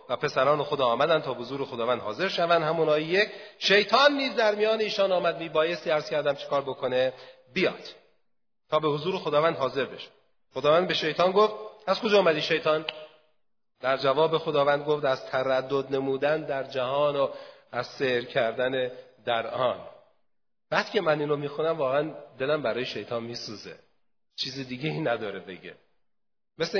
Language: Persian